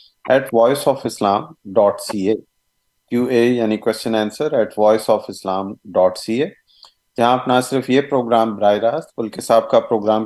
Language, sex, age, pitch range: Urdu, male, 40-59, 105-125 Hz